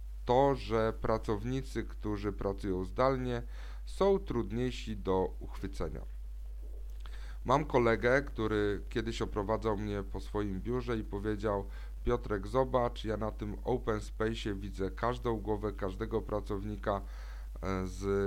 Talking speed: 110 wpm